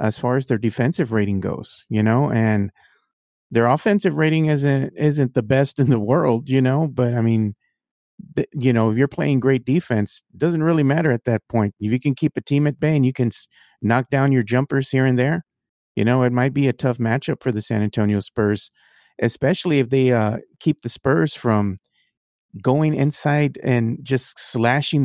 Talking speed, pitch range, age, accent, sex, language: 205 wpm, 115-145 Hz, 40-59, American, male, English